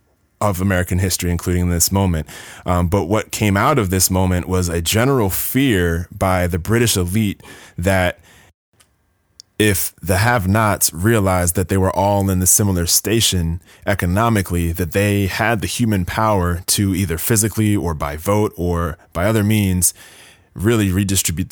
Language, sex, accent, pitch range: English, male, American, 90-105 Hz